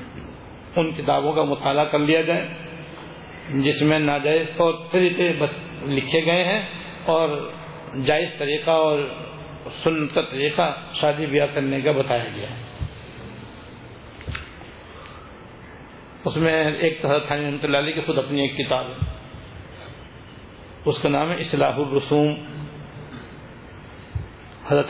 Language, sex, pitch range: Urdu, male, 145-165 Hz